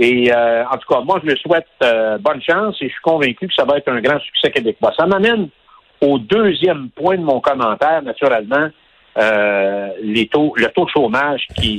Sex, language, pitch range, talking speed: male, French, 135-205 Hz, 210 wpm